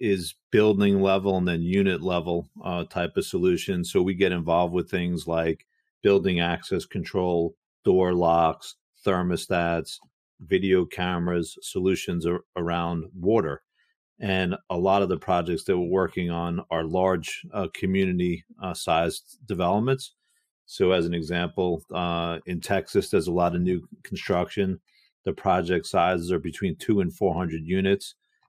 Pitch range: 85-100 Hz